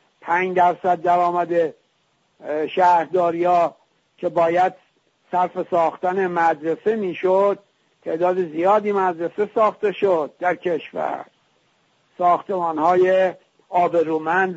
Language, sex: English, male